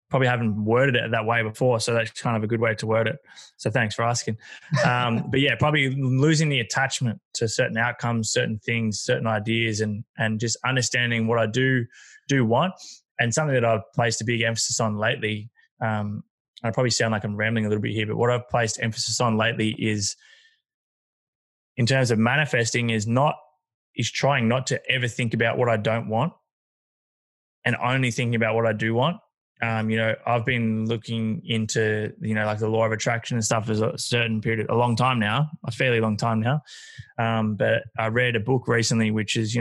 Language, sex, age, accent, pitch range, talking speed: English, male, 20-39, Australian, 110-125 Hz, 210 wpm